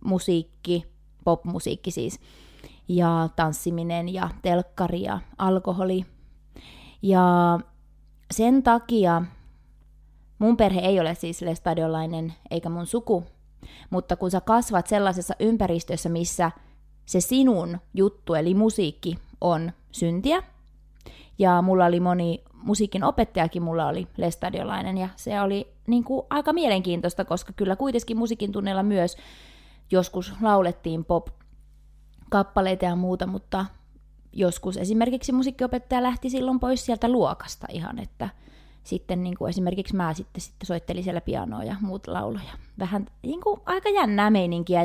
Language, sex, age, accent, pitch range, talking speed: Finnish, female, 20-39, native, 175-215 Hz, 125 wpm